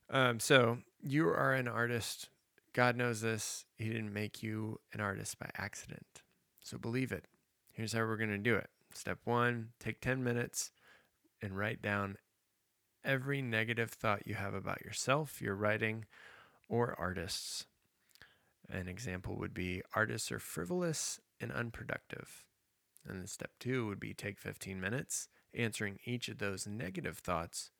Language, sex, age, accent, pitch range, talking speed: English, male, 20-39, American, 100-120 Hz, 150 wpm